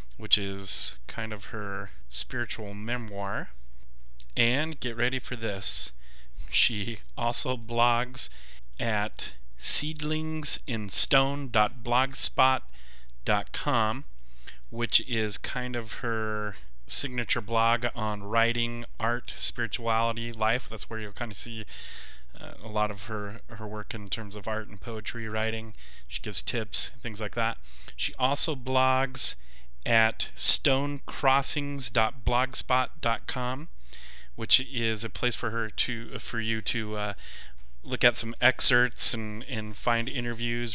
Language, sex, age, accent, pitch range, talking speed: English, male, 30-49, American, 105-125 Hz, 115 wpm